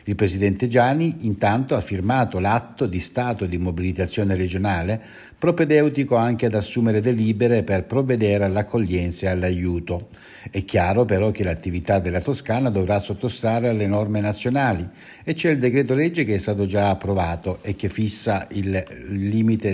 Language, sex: Italian, male